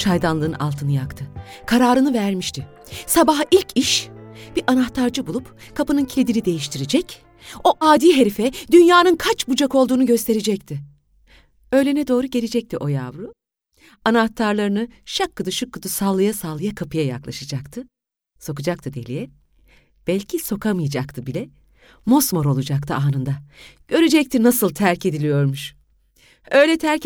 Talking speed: 110 wpm